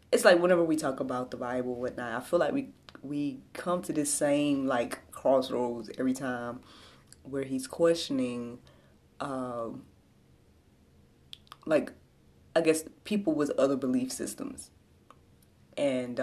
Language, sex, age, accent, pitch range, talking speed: English, female, 20-39, American, 125-170 Hz, 135 wpm